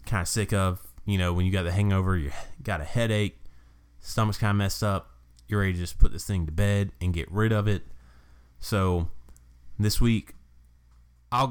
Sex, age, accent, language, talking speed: male, 20-39, American, English, 200 wpm